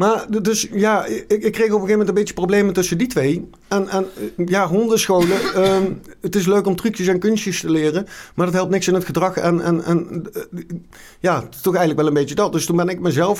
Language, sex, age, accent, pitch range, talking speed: Dutch, male, 50-69, Dutch, 140-180 Hz, 240 wpm